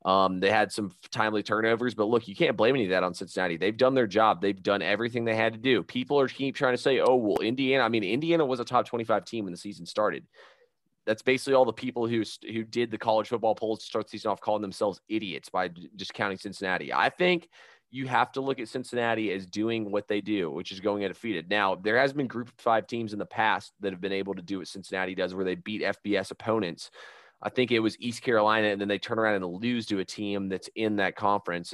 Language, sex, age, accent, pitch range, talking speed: English, male, 30-49, American, 100-120 Hz, 255 wpm